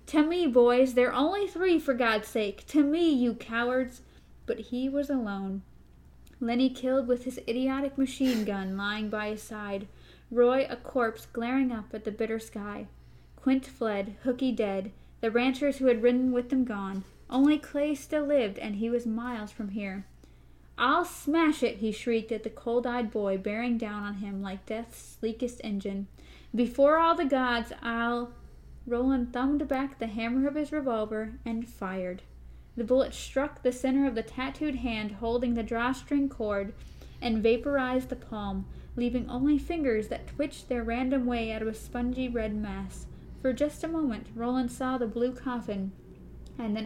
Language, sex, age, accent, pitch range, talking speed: English, female, 10-29, American, 220-265 Hz, 170 wpm